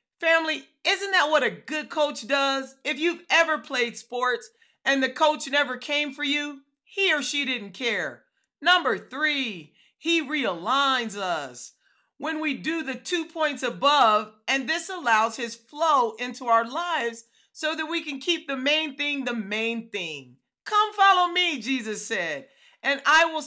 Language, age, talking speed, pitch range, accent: English, 40-59, 165 wpm, 245-320 Hz, American